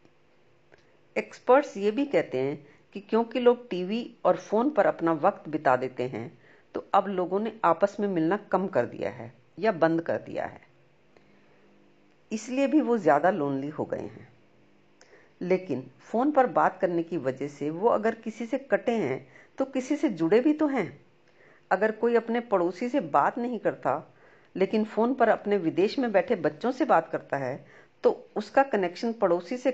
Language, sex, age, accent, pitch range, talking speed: Hindi, female, 50-69, native, 160-230 Hz, 175 wpm